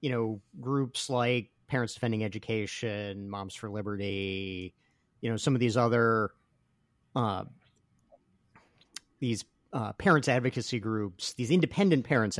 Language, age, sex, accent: English, 40-59, male, American